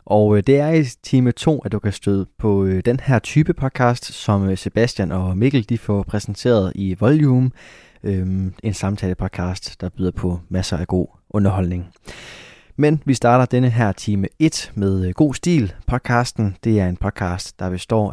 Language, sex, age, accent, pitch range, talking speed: Danish, male, 20-39, native, 95-120 Hz, 170 wpm